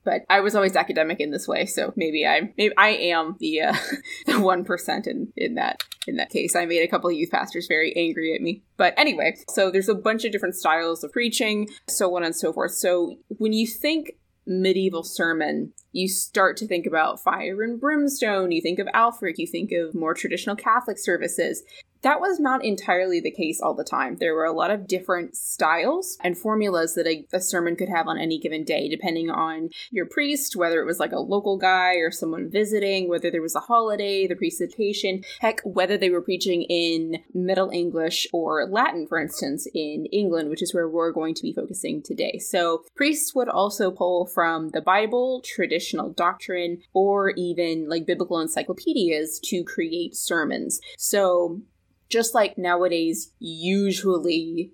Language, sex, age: English, female, 20-39